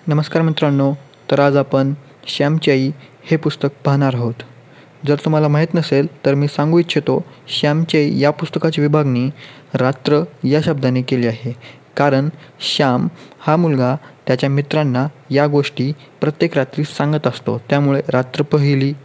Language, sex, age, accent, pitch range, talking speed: Marathi, male, 20-39, native, 135-155 Hz, 130 wpm